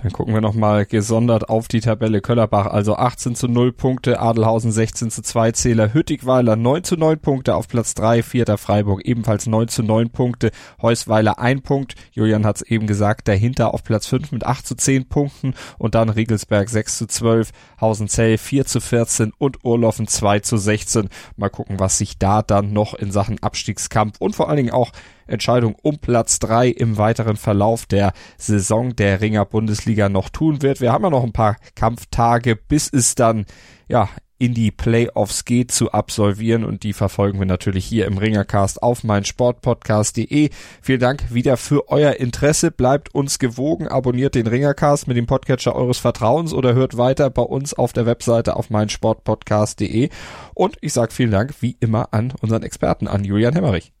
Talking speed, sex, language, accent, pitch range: 180 wpm, male, German, German, 105-125 Hz